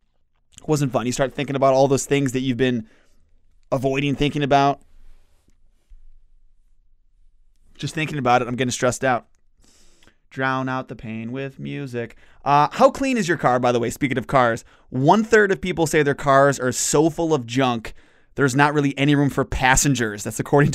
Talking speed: 175 wpm